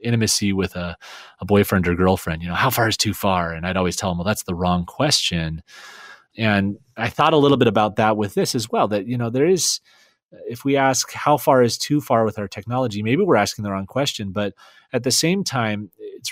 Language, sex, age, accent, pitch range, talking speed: English, male, 30-49, American, 95-120 Hz, 235 wpm